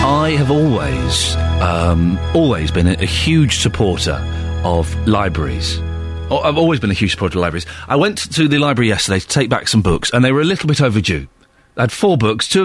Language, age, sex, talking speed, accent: English, 40-59, male, 200 wpm, British